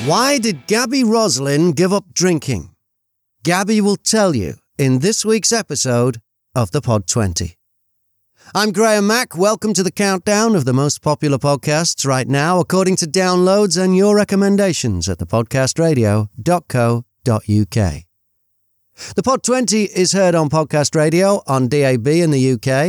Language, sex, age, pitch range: English, male, 40-59, 110-185 Hz